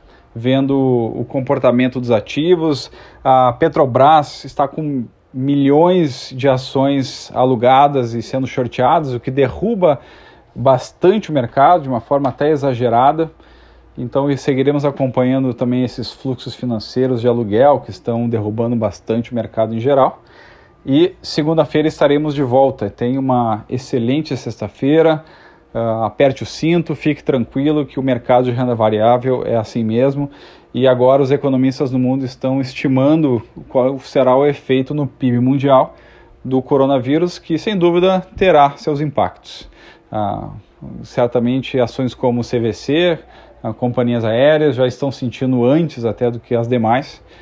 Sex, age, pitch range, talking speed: male, 40-59, 120-145 Hz, 140 wpm